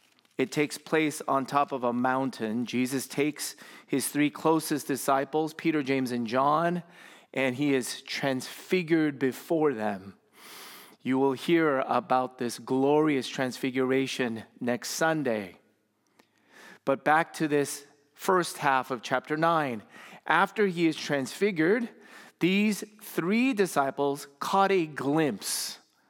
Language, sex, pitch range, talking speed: English, male, 140-195 Hz, 120 wpm